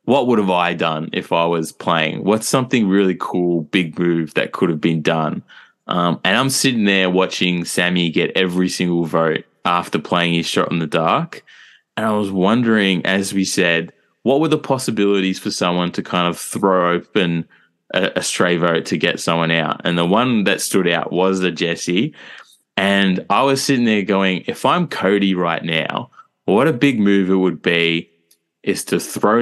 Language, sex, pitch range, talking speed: English, male, 85-100 Hz, 190 wpm